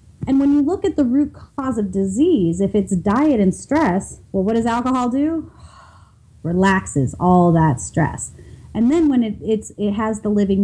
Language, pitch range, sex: English, 190-245 Hz, female